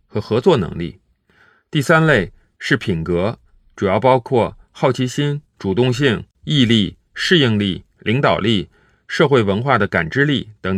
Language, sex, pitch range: Chinese, male, 105-140 Hz